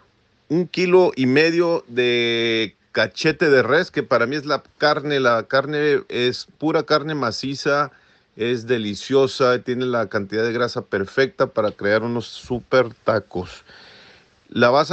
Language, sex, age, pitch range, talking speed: Spanish, male, 40-59, 125-155 Hz, 140 wpm